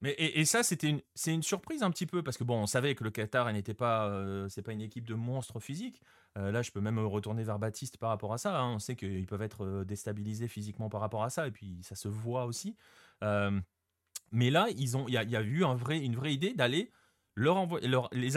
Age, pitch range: 30-49, 110-145 Hz